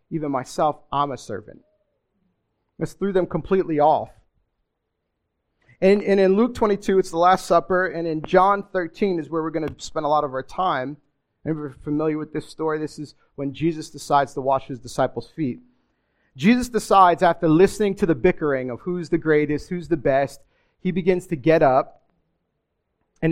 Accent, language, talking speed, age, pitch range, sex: American, English, 180 wpm, 40-59, 130-165 Hz, male